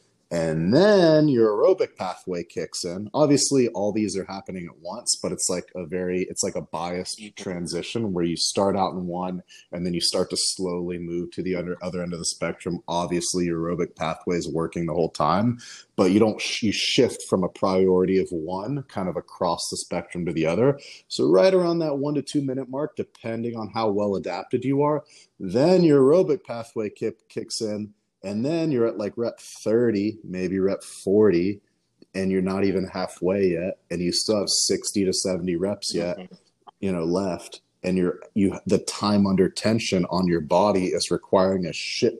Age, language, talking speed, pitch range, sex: 30-49, English, 195 wpm, 90-115 Hz, male